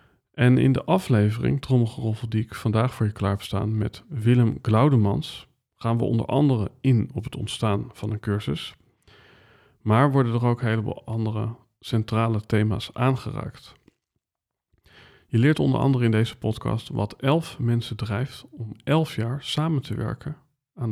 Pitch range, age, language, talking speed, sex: 110-130 Hz, 40-59, Dutch, 160 wpm, male